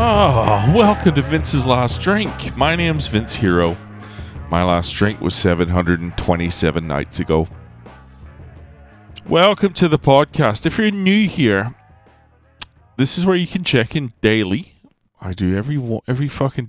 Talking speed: 135 wpm